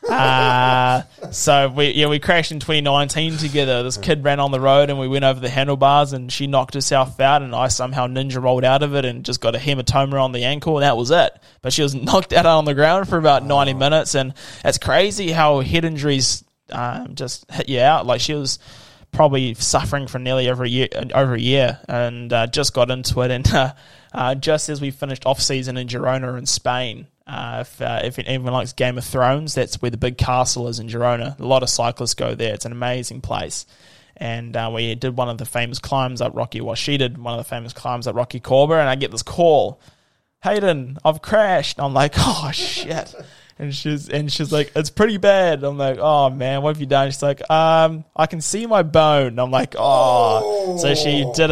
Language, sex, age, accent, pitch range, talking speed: English, male, 20-39, Australian, 125-145 Hz, 225 wpm